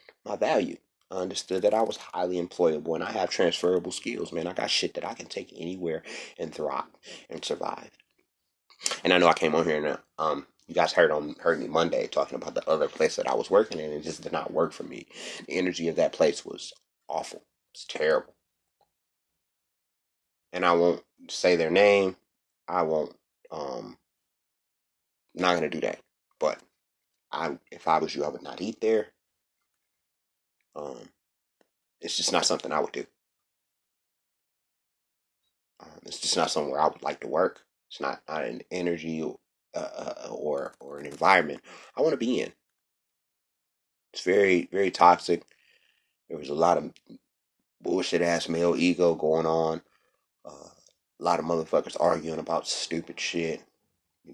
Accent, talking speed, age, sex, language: American, 170 wpm, 30-49, male, English